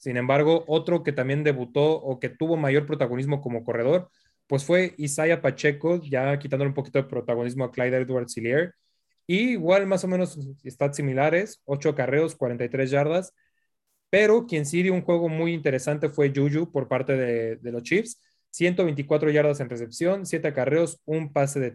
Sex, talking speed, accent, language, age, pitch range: male, 170 wpm, Mexican, Spanish, 20-39, 135-165 Hz